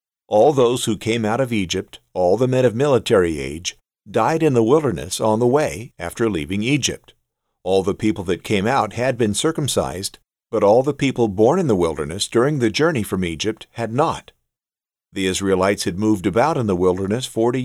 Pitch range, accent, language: 100-125 Hz, American, English